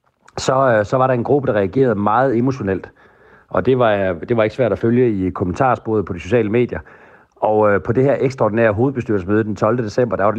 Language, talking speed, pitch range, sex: Danish, 215 wpm, 100-120 Hz, male